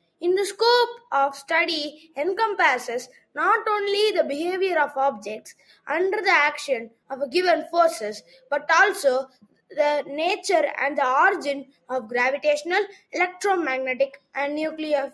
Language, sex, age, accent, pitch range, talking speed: English, female, 20-39, Indian, 270-385 Hz, 125 wpm